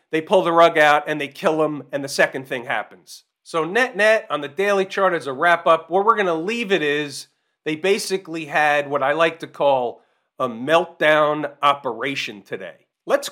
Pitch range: 155-190 Hz